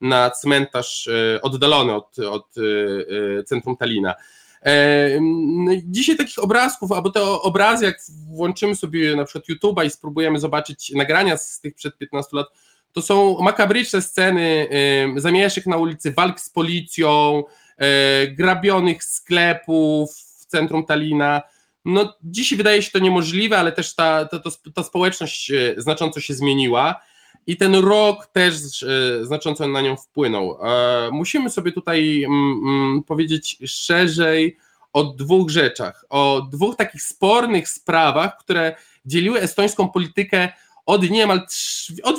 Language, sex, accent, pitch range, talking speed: Polish, male, native, 145-185 Hz, 125 wpm